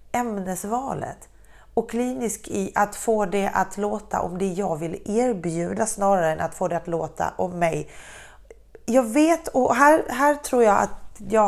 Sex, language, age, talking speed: female, Swedish, 30-49, 165 wpm